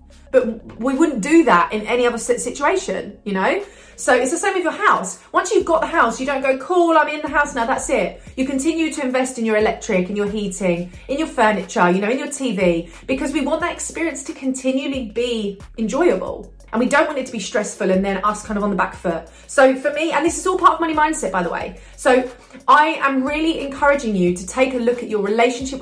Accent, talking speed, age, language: British, 245 wpm, 30-49, English